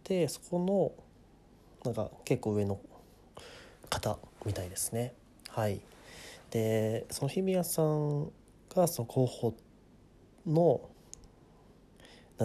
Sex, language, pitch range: male, Japanese, 105-145 Hz